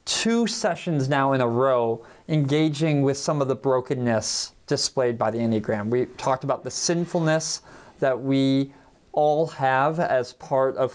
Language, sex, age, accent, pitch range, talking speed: English, male, 30-49, American, 125-160 Hz, 155 wpm